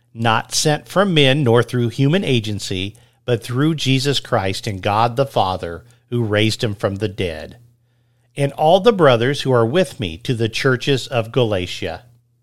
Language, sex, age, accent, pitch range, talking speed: English, male, 50-69, American, 110-140 Hz, 170 wpm